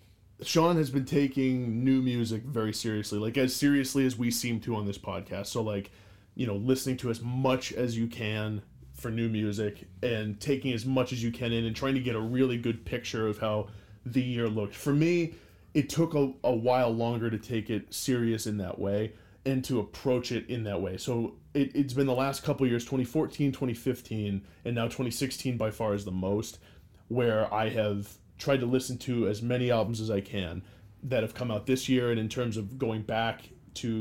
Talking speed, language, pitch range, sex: 210 wpm, English, 105-130 Hz, male